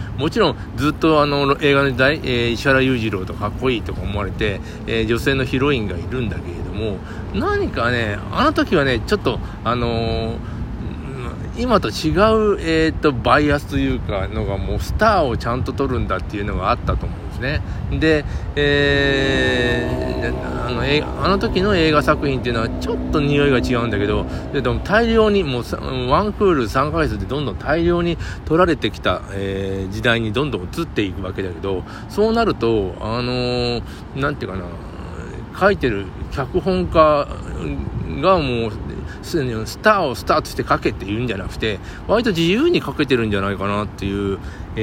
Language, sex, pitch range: Japanese, male, 100-140 Hz